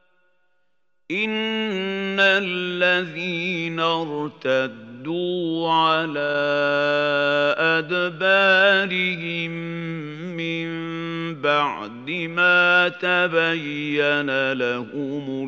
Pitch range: 145-180 Hz